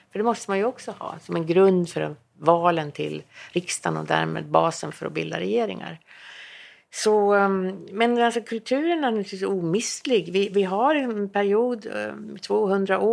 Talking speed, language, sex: 140 wpm, English, female